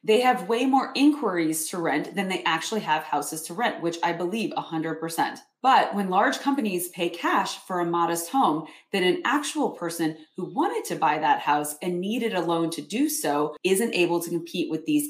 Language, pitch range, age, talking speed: English, 165-240 Hz, 30-49, 205 wpm